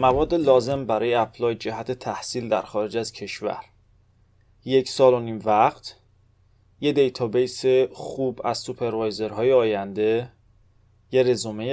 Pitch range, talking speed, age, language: 110-140 Hz, 125 wpm, 30-49, Persian